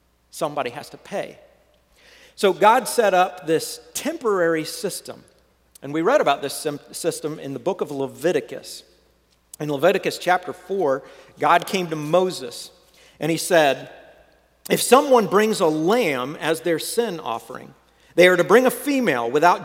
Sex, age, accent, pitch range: male, 50-69, American, 140-200 Hz